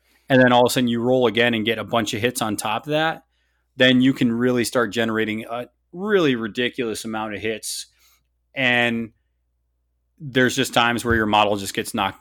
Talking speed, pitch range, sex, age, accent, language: 200 wpm, 105-125 Hz, male, 20-39, American, English